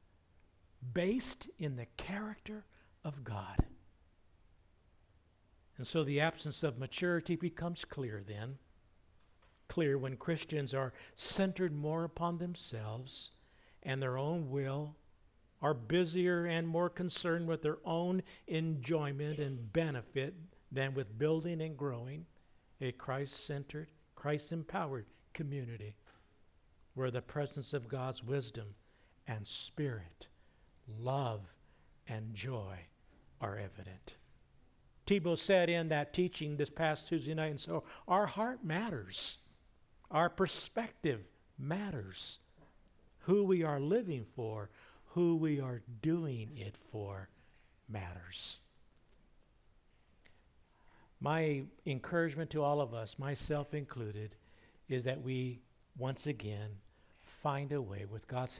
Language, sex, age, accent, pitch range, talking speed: English, male, 60-79, American, 105-160 Hz, 110 wpm